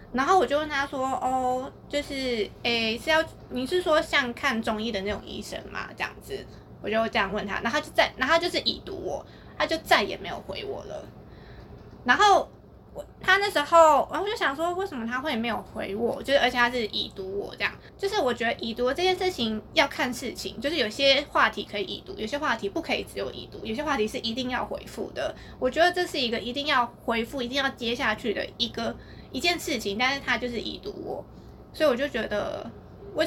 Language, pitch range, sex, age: Chinese, 230-305 Hz, female, 20-39